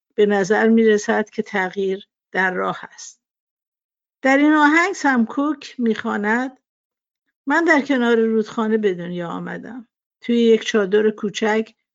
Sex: female